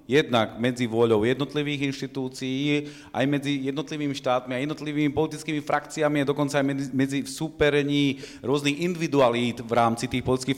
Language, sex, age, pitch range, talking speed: Slovak, male, 40-59, 120-145 Hz, 140 wpm